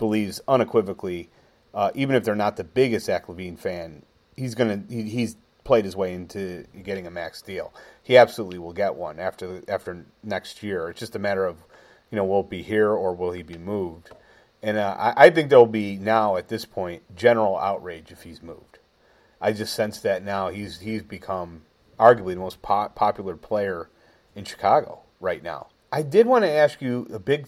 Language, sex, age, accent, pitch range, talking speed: English, male, 30-49, American, 95-115 Hz, 200 wpm